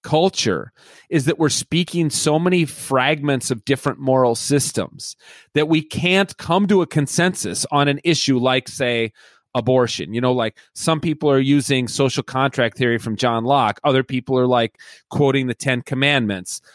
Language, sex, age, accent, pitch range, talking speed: English, male, 30-49, American, 125-150 Hz, 165 wpm